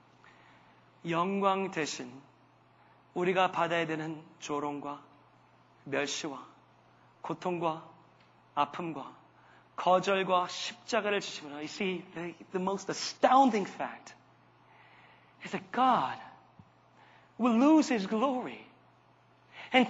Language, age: Korean, 30-49